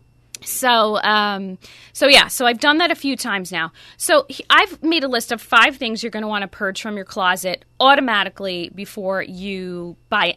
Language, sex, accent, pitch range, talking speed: English, female, American, 185-250 Hz, 195 wpm